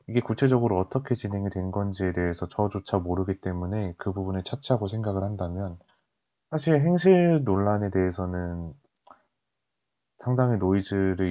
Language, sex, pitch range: Korean, male, 90-120 Hz